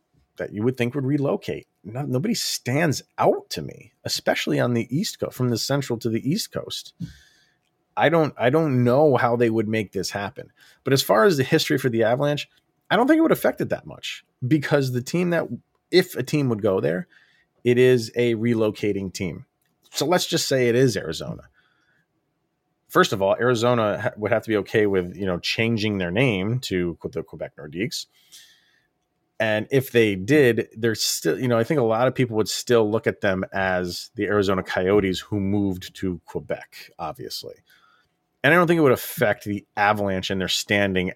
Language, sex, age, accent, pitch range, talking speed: English, male, 30-49, American, 105-135 Hz, 195 wpm